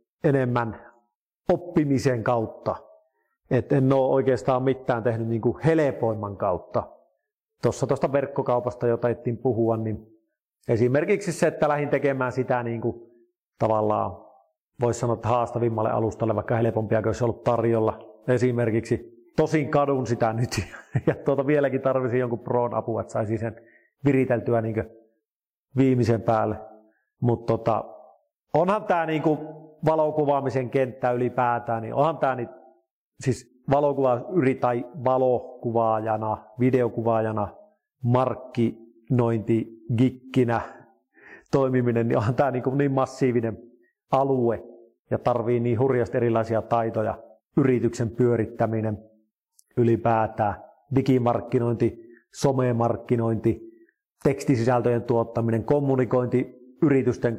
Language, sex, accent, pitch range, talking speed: Finnish, male, native, 115-135 Hz, 105 wpm